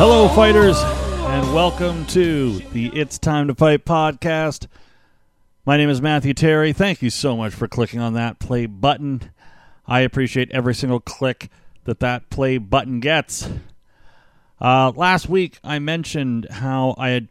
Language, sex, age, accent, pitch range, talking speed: English, male, 40-59, American, 105-135 Hz, 155 wpm